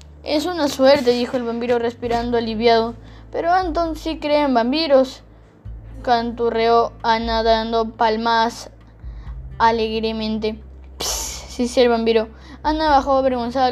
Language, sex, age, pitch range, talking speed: English, female, 10-29, 235-275 Hz, 120 wpm